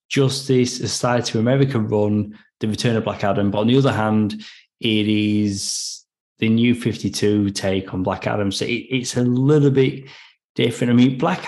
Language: English